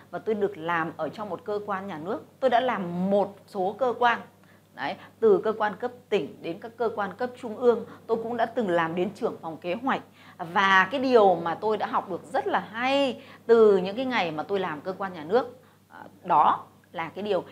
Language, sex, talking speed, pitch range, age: Vietnamese, female, 230 wpm, 195-275 Hz, 20-39